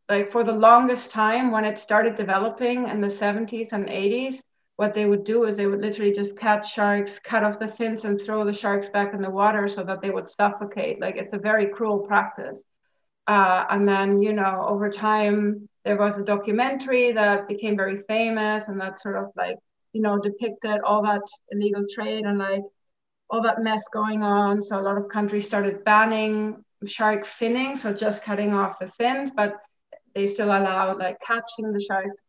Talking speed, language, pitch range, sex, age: 195 wpm, English, 200-220 Hz, female, 30-49